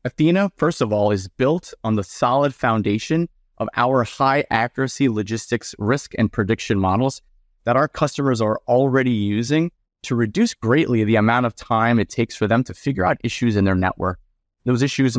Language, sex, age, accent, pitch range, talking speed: English, male, 30-49, American, 110-150 Hz, 180 wpm